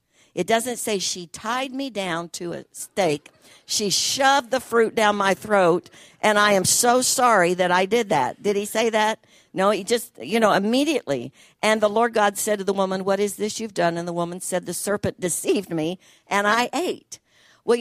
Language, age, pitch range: English, 60-79, 170-215 Hz